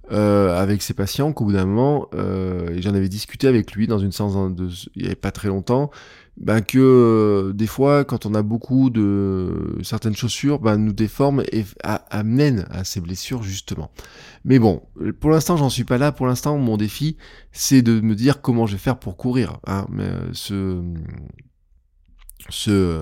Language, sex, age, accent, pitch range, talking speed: French, male, 20-39, French, 95-130 Hz, 195 wpm